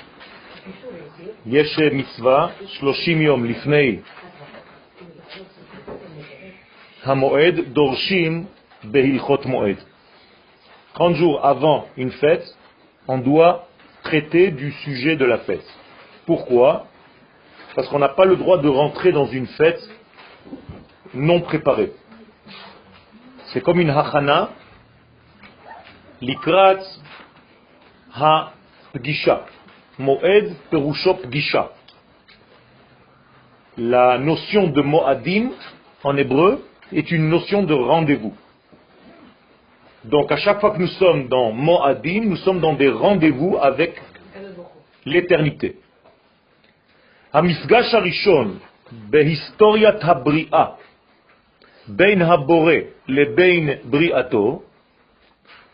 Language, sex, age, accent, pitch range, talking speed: French, male, 40-59, French, 140-180 Hz, 75 wpm